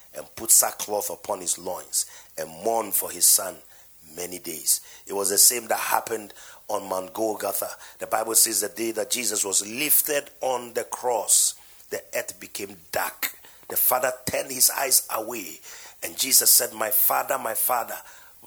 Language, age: English, 40-59